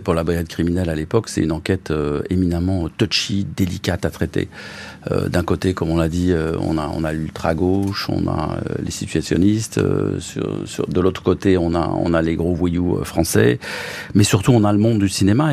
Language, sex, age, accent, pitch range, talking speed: French, male, 50-69, French, 90-120 Hz, 215 wpm